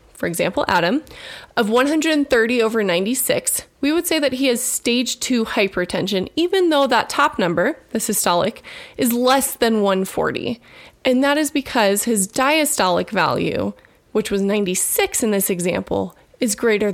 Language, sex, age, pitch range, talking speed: English, female, 20-39, 205-290 Hz, 150 wpm